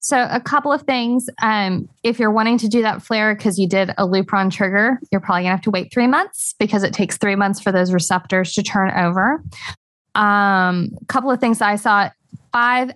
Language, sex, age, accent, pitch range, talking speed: English, female, 20-39, American, 195-240 Hz, 215 wpm